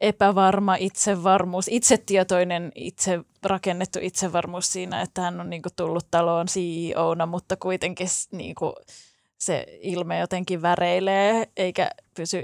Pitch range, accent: 170-195 Hz, native